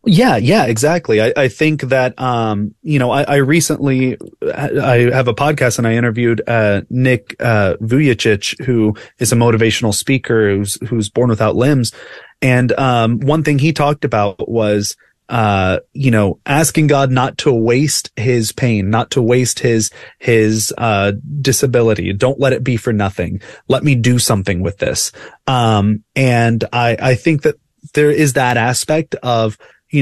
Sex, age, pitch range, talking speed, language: male, 30-49, 115-140 Hz, 170 wpm, English